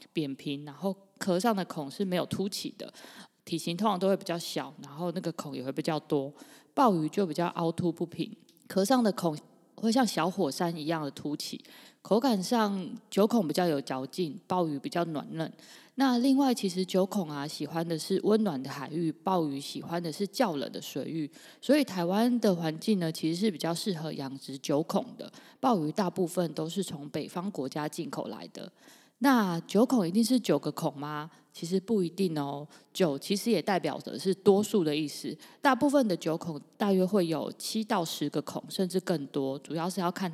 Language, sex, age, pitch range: Chinese, female, 20-39, 155-205 Hz